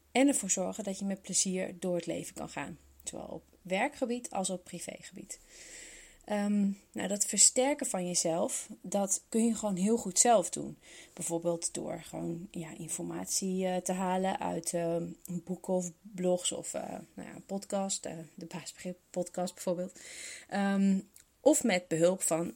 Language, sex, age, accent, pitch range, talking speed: Dutch, female, 30-49, Dutch, 175-225 Hz, 160 wpm